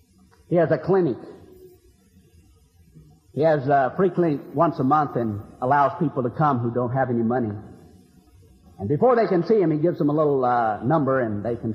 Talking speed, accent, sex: 195 wpm, American, male